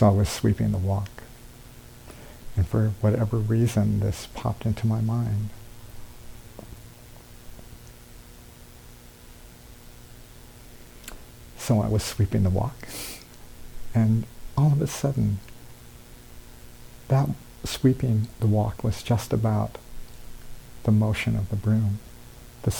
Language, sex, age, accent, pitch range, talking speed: English, male, 60-79, American, 100-120 Hz, 105 wpm